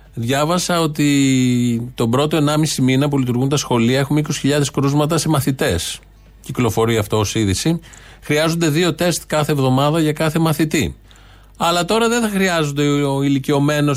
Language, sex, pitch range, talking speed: Greek, male, 120-155 Hz, 145 wpm